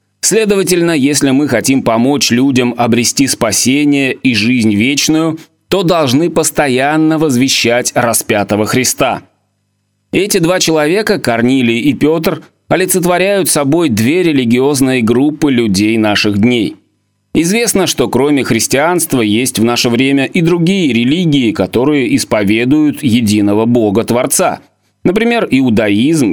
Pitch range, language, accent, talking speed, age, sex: 115-160 Hz, Russian, native, 110 wpm, 30-49, male